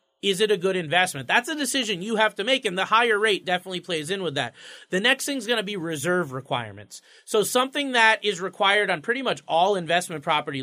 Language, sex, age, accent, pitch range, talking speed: English, male, 30-49, American, 170-230 Hz, 230 wpm